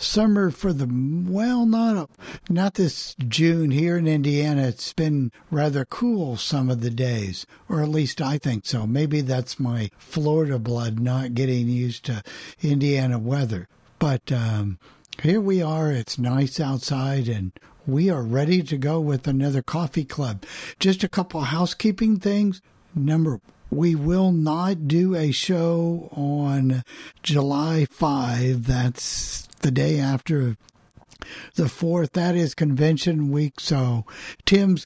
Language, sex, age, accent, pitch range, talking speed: English, male, 60-79, American, 125-165 Hz, 140 wpm